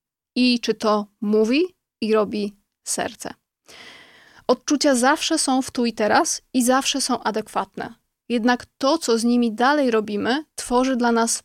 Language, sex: Polish, female